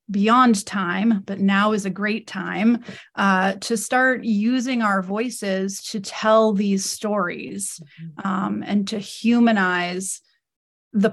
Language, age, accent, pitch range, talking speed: English, 30-49, American, 190-220 Hz, 125 wpm